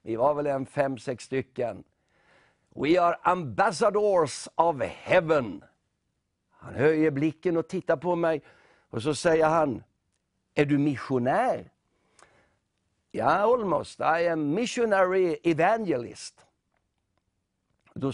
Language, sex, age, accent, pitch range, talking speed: Swedish, male, 60-79, native, 145-190 Hz, 115 wpm